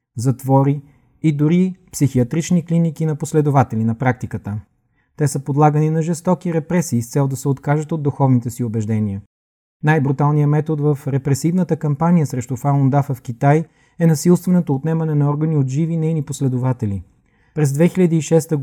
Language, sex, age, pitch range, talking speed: Bulgarian, male, 30-49, 135-160 Hz, 140 wpm